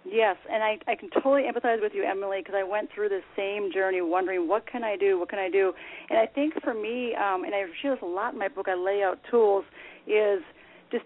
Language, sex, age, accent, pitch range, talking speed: English, female, 40-59, American, 195-260 Hz, 255 wpm